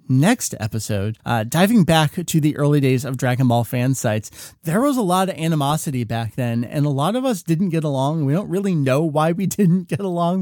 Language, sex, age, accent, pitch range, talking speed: English, male, 30-49, American, 125-160 Hz, 225 wpm